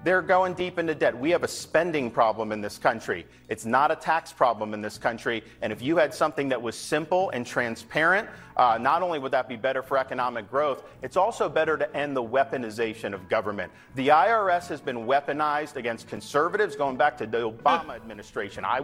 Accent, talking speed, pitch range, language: American, 205 wpm, 125-160 Hz, English